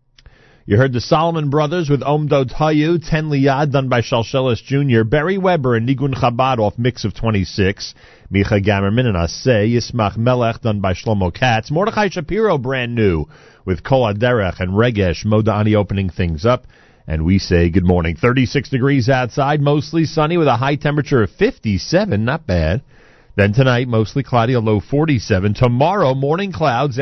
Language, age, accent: English, 40-59, American